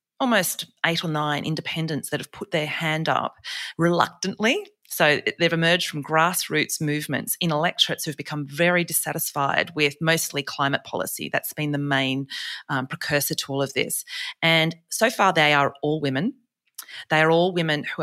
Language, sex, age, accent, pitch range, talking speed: English, female, 30-49, Australian, 150-175 Hz, 165 wpm